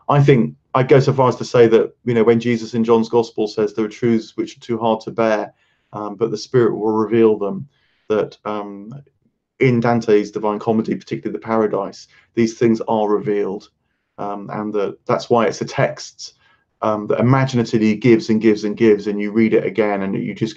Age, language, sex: 30-49, English, male